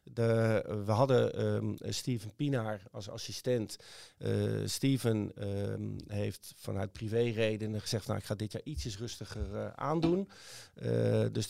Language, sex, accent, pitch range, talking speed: Dutch, male, Dutch, 105-130 Hz, 135 wpm